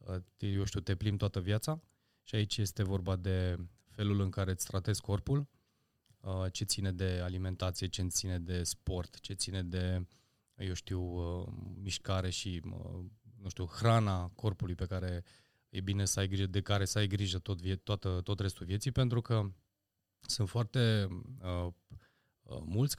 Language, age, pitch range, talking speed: Romanian, 20-39, 95-120 Hz, 155 wpm